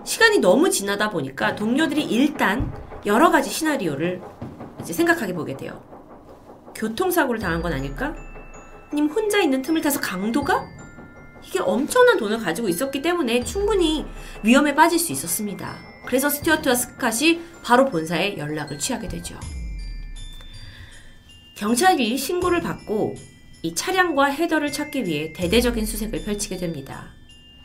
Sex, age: female, 30-49